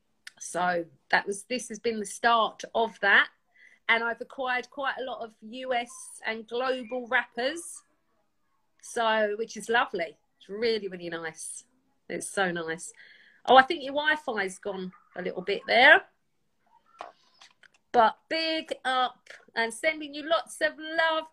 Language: English